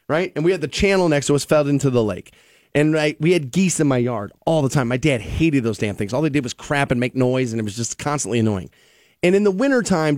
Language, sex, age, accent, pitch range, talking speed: English, male, 30-49, American, 140-205 Hz, 275 wpm